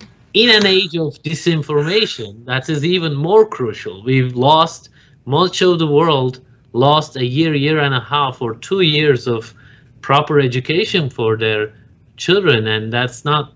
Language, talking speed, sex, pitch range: Turkish, 155 wpm, male, 125-155 Hz